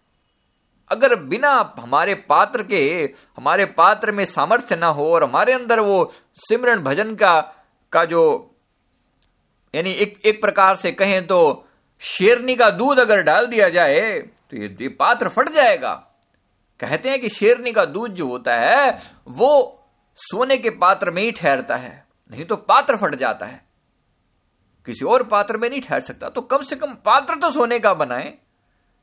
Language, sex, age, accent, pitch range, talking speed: Hindi, male, 50-69, native, 195-275 Hz, 160 wpm